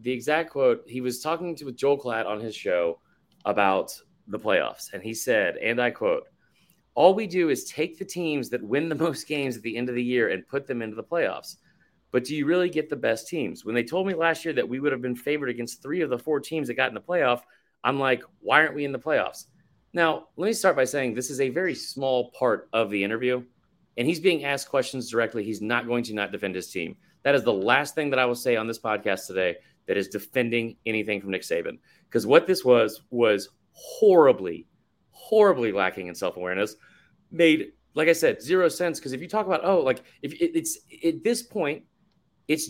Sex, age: male, 30-49